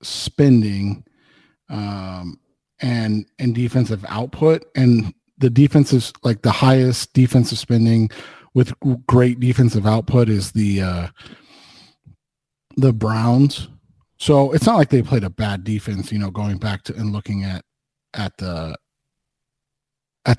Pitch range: 110-140 Hz